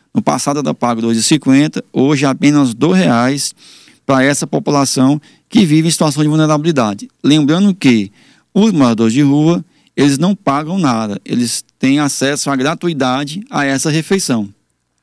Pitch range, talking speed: 125-160 Hz, 150 wpm